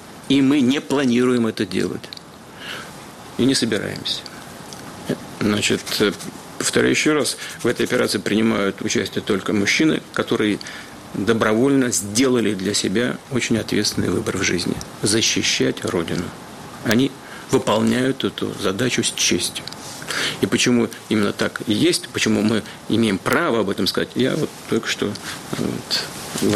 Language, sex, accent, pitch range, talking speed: Ukrainian, male, native, 105-120 Hz, 125 wpm